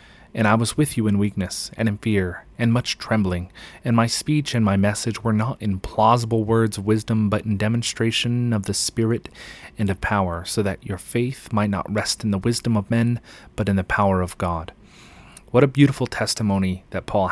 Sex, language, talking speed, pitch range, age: male, English, 205 wpm, 100-115 Hz, 30-49